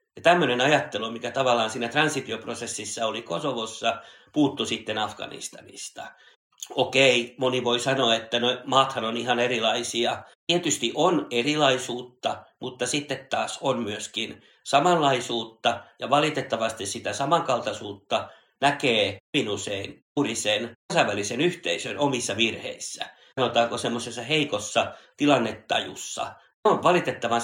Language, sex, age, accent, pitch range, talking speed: Finnish, male, 60-79, native, 115-140 Hz, 105 wpm